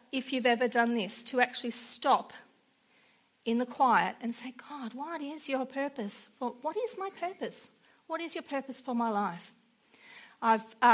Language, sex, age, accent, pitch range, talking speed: English, female, 40-59, Australian, 225-275 Hz, 170 wpm